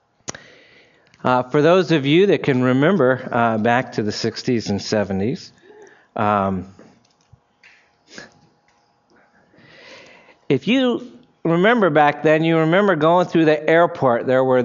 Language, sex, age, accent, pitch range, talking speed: English, male, 50-69, American, 130-180 Hz, 120 wpm